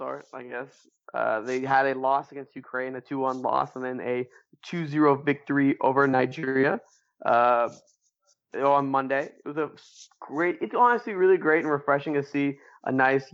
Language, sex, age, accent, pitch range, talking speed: English, male, 20-39, American, 135-170 Hz, 160 wpm